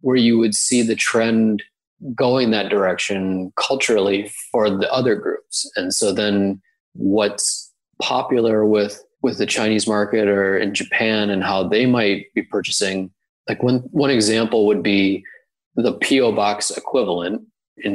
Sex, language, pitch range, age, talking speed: male, English, 100-120 Hz, 20-39, 145 wpm